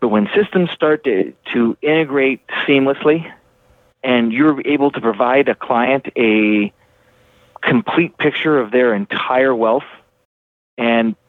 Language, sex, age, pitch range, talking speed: English, male, 40-59, 120-150 Hz, 120 wpm